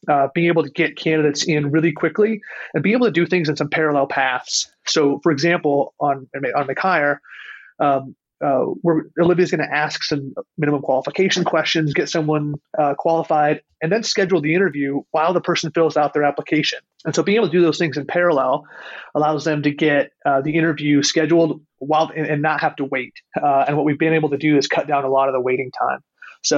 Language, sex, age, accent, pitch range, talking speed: English, male, 30-49, American, 140-160 Hz, 215 wpm